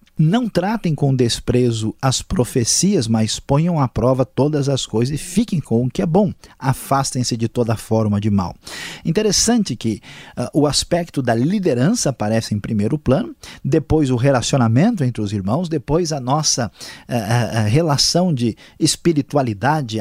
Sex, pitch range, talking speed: male, 115-160 Hz, 155 wpm